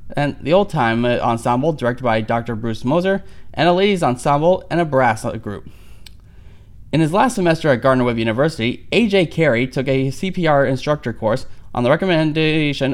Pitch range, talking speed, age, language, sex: 115-155 Hz, 160 wpm, 20-39, English, male